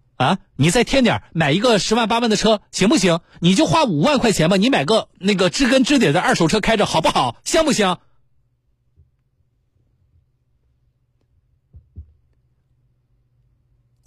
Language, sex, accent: Chinese, male, native